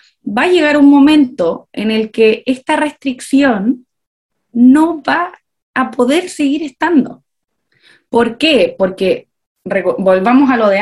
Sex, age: female, 30-49